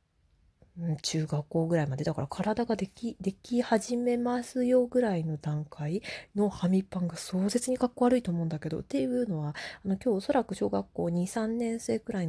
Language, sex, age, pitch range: Japanese, female, 20-39, 165-245 Hz